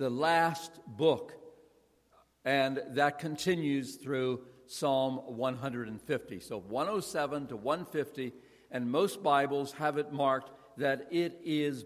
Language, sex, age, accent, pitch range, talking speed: English, male, 60-79, American, 140-180 Hz, 110 wpm